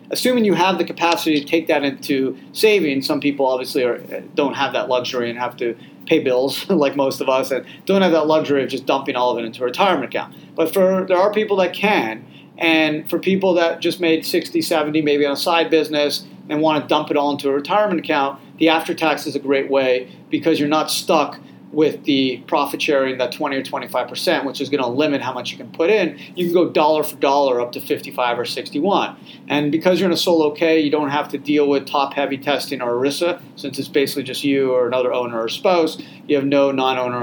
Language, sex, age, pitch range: English, male, 40-59, 135-165 Hz